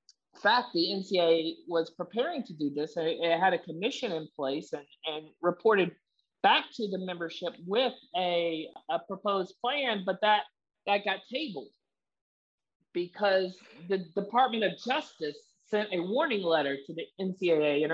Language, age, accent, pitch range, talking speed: English, 40-59, American, 165-210 Hz, 145 wpm